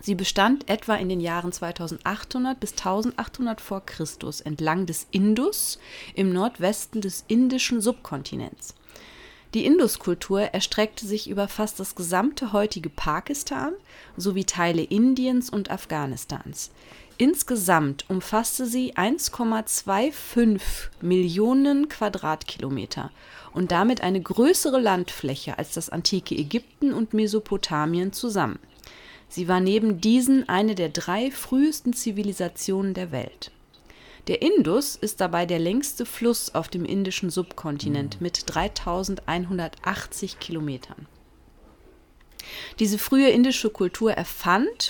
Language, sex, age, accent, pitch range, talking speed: German, female, 30-49, German, 175-235 Hz, 110 wpm